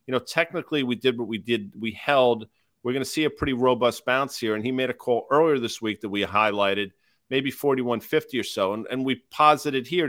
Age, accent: 40-59, American